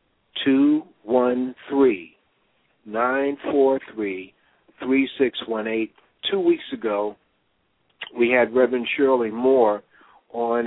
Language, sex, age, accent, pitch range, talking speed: English, male, 60-79, American, 105-130 Hz, 105 wpm